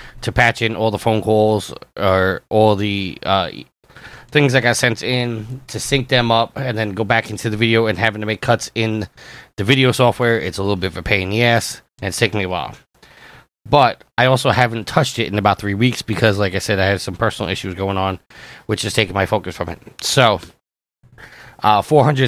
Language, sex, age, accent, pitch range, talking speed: English, male, 30-49, American, 105-125 Hz, 225 wpm